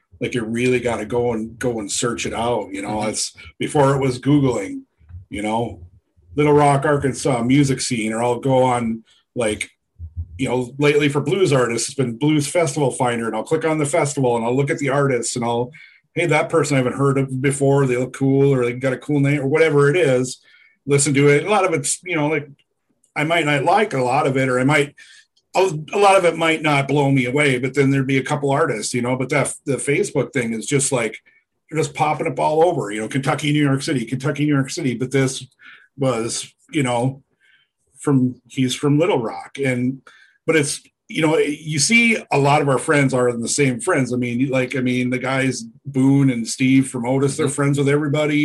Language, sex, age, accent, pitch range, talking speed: English, male, 40-59, American, 125-150 Hz, 230 wpm